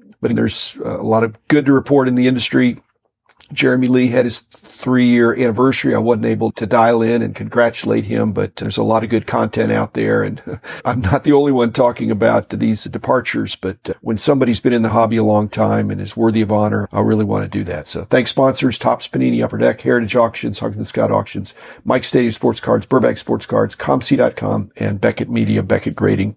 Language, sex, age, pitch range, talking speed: English, male, 50-69, 110-125 Hz, 215 wpm